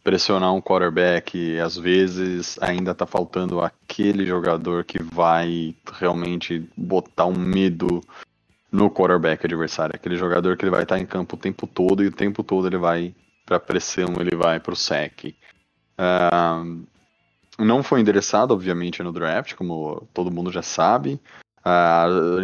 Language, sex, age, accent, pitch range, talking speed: Portuguese, male, 20-39, Brazilian, 85-100 Hz, 150 wpm